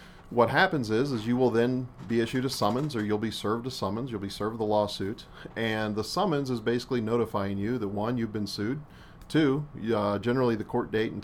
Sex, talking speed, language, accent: male, 220 wpm, English, American